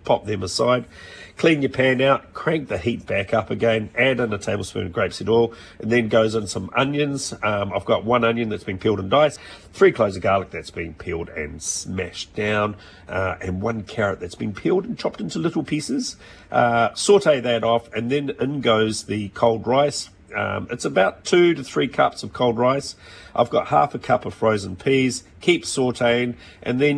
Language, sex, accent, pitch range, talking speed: English, male, Australian, 100-135 Hz, 200 wpm